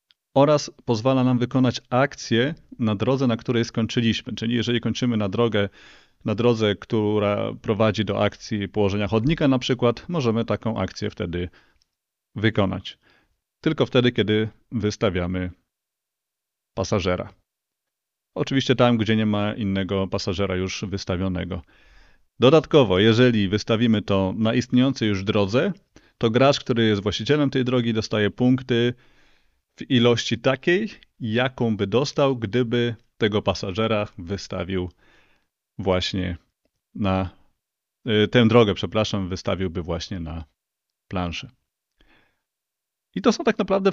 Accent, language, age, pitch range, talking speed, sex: native, Polish, 30-49, 100-125 Hz, 115 wpm, male